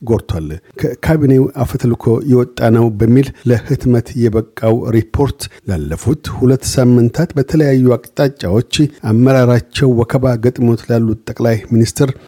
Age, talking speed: 50-69, 90 wpm